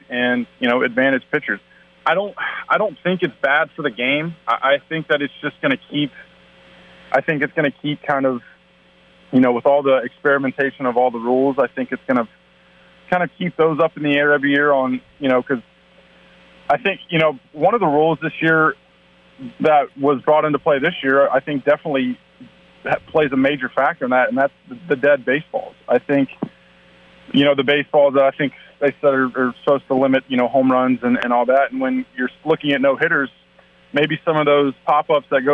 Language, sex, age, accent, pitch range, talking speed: English, male, 20-39, American, 125-145 Hz, 220 wpm